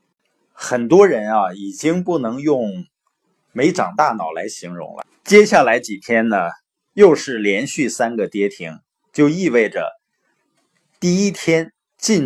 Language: Chinese